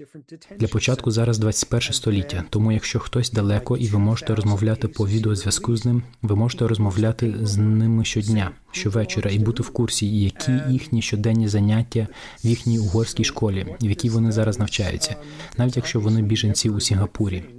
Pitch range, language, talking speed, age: 105-120 Hz, Ukrainian, 160 wpm, 20-39